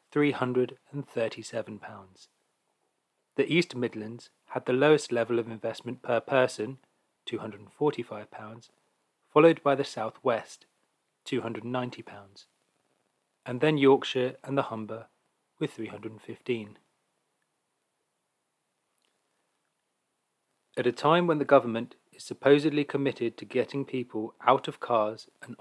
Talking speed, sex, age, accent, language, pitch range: 100 wpm, male, 30-49, British, English, 110-135 Hz